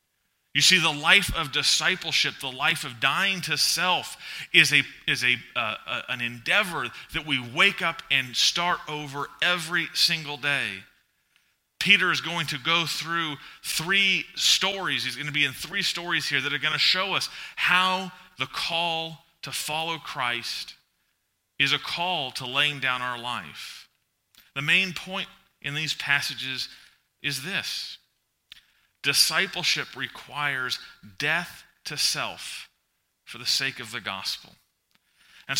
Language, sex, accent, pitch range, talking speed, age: English, male, American, 135-170 Hz, 140 wpm, 30-49